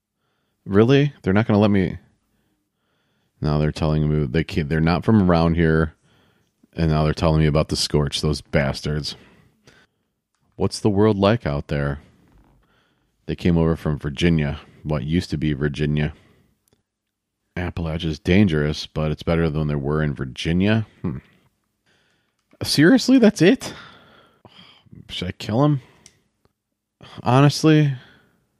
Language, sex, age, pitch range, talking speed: English, male, 30-49, 80-110 Hz, 130 wpm